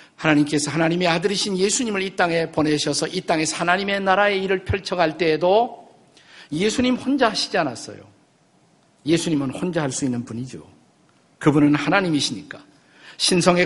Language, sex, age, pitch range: Korean, male, 50-69, 145-195 Hz